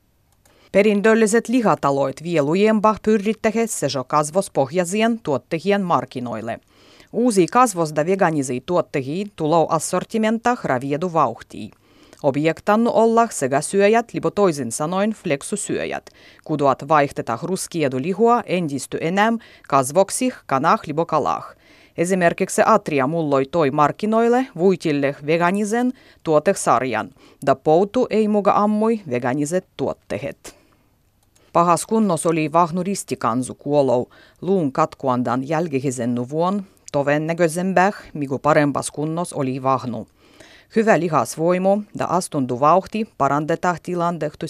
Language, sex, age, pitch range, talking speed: Finnish, female, 30-49, 140-195 Hz, 105 wpm